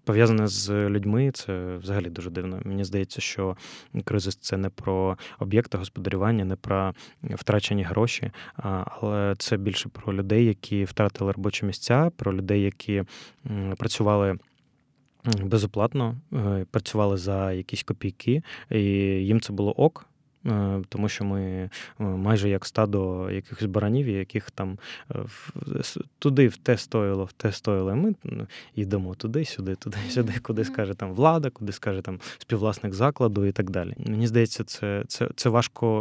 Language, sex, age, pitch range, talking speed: Ukrainian, male, 20-39, 100-120 Hz, 140 wpm